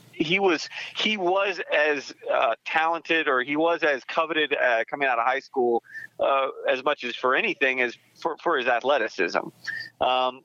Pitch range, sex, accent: 130-195 Hz, male, American